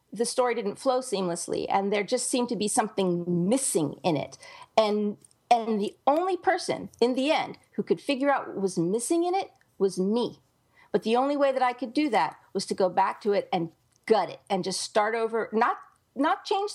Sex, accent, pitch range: female, American, 195-265 Hz